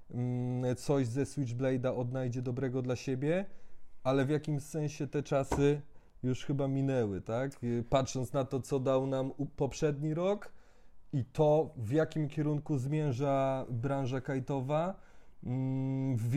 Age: 30-49